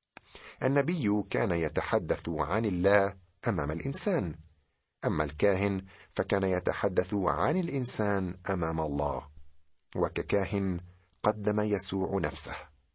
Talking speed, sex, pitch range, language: 90 wpm, male, 80-110 Hz, Arabic